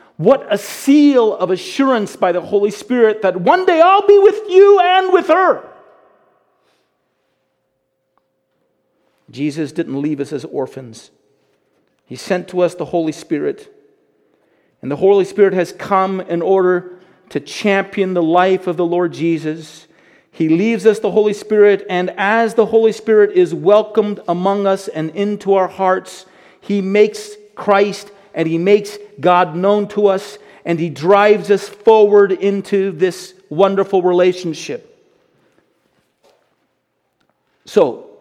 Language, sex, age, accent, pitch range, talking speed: English, male, 40-59, American, 175-210 Hz, 135 wpm